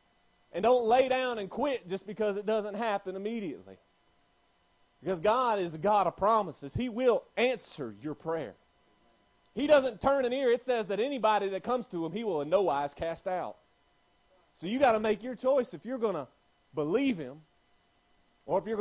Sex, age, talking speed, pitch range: male, 30-49, 190 wpm, 155-215 Hz